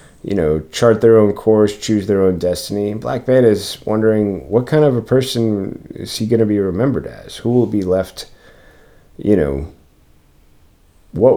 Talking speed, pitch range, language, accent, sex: 175 wpm, 80-100 Hz, English, American, male